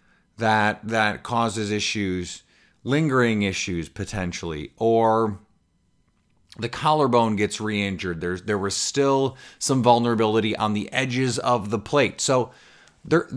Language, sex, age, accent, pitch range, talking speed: English, male, 30-49, American, 95-130 Hz, 115 wpm